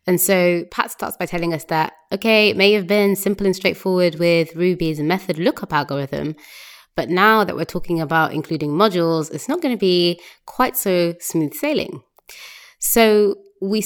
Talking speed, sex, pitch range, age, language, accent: 175 wpm, female, 160-200 Hz, 20-39, English, British